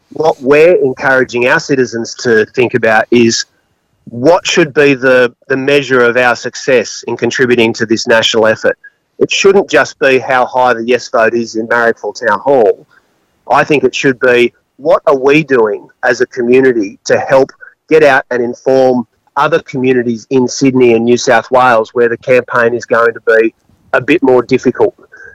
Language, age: English, 30-49